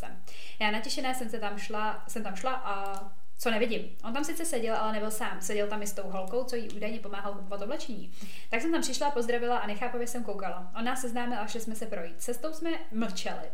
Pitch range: 200-240 Hz